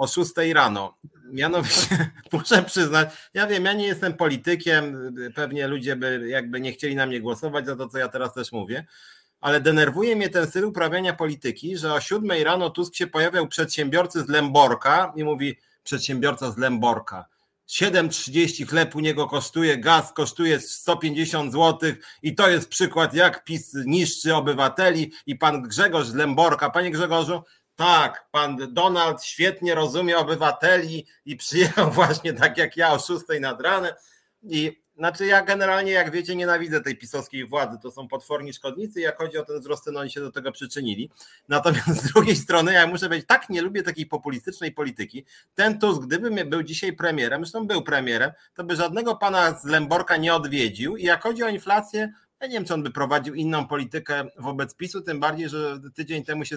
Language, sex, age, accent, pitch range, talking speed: Polish, male, 40-59, native, 145-175 Hz, 180 wpm